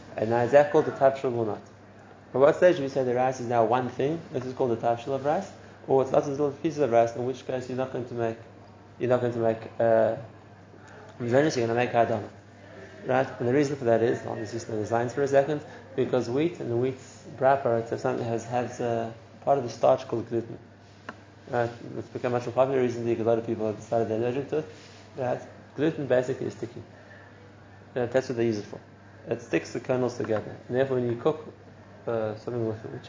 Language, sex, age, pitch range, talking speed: English, male, 30-49, 110-130 Hz, 240 wpm